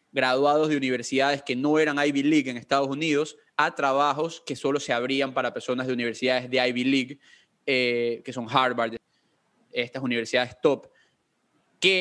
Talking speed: 160 wpm